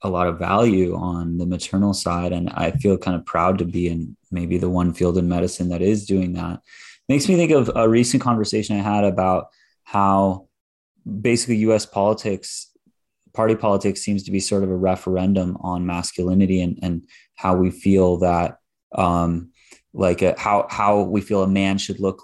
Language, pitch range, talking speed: English, 95-110 Hz, 185 wpm